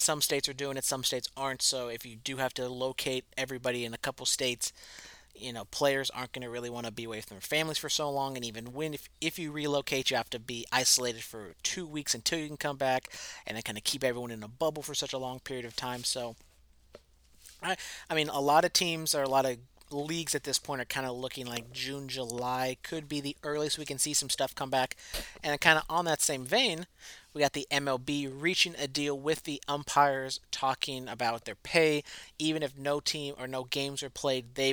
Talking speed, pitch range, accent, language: 240 wpm, 125-145 Hz, American, English